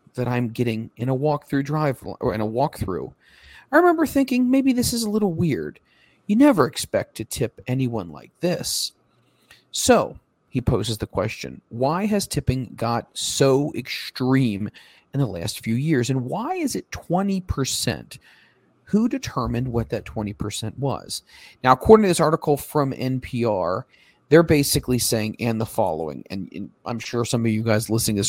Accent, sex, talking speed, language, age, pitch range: American, male, 170 wpm, English, 40-59, 115-160 Hz